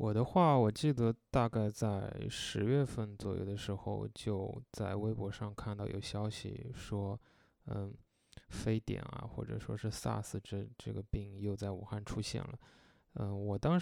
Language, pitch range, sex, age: Chinese, 100-115 Hz, male, 20-39